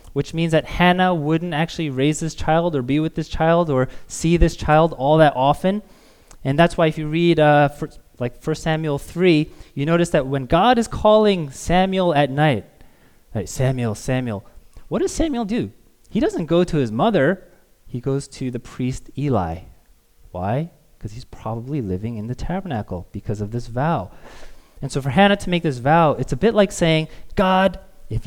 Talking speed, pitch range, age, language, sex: 190 wpm, 120-165 Hz, 20-39, English, male